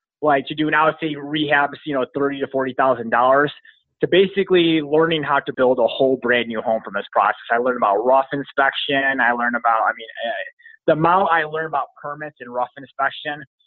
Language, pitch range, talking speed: English, 125-150 Hz, 200 wpm